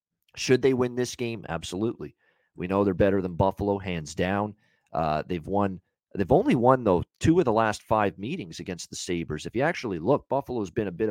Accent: American